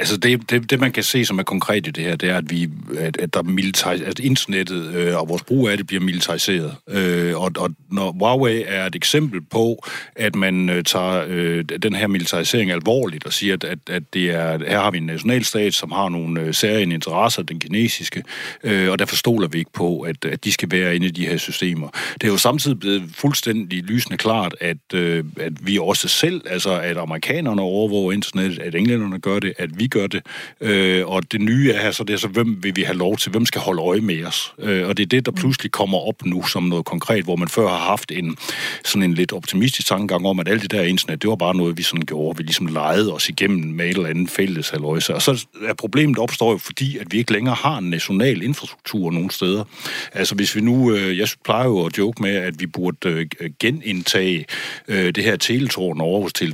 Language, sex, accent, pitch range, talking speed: Danish, male, native, 85-110 Hz, 235 wpm